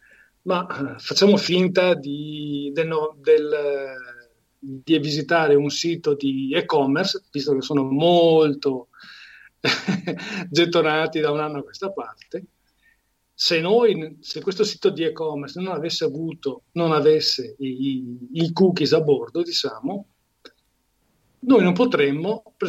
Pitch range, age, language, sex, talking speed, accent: 140-185 Hz, 40-59, Italian, male, 120 wpm, native